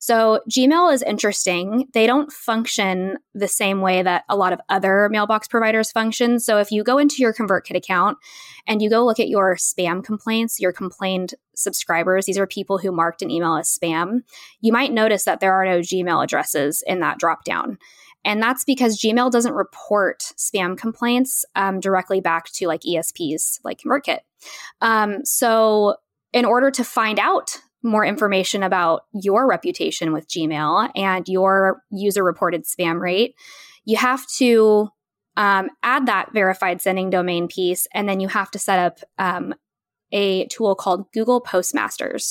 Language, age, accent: English, 20-39, American